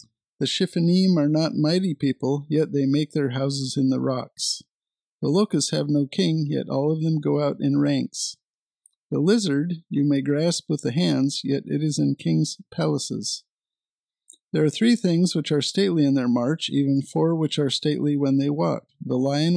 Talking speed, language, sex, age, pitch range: 185 wpm, English, male, 50-69, 140-170 Hz